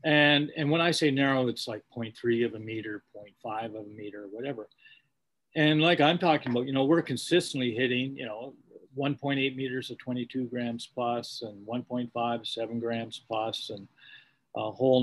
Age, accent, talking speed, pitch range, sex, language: 40-59, American, 170 wpm, 115-140 Hz, male, English